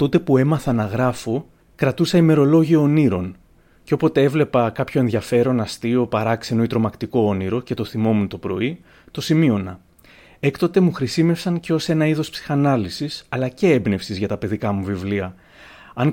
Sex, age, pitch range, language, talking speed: male, 30-49, 115-145 Hz, Greek, 155 wpm